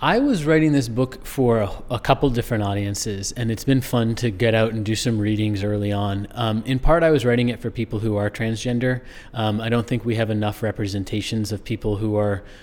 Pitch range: 110-125 Hz